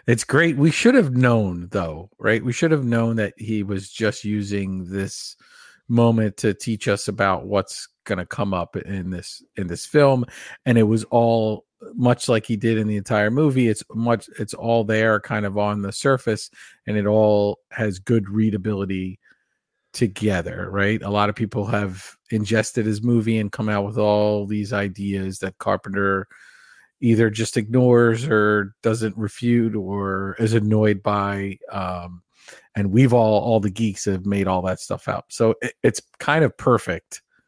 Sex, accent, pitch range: male, American, 100-115 Hz